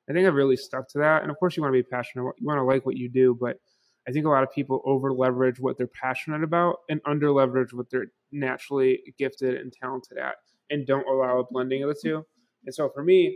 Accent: American